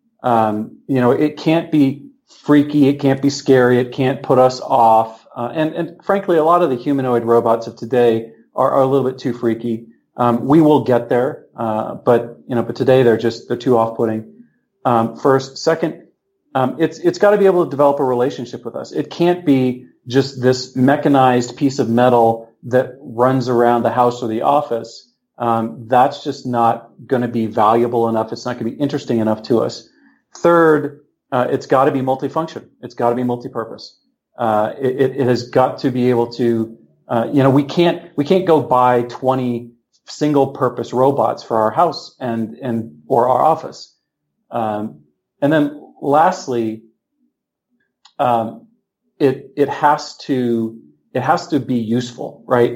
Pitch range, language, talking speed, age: 120-145 Hz, English, 185 wpm, 40-59